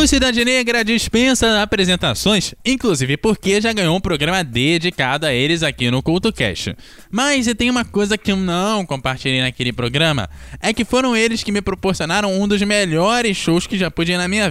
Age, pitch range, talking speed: 20-39, 140-205 Hz, 185 wpm